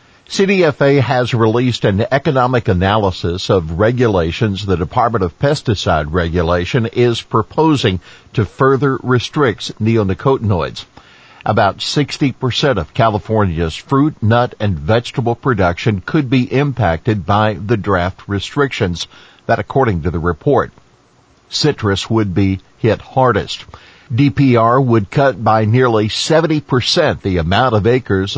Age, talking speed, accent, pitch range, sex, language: 50-69, 115 wpm, American, 95-125 Hz, male, English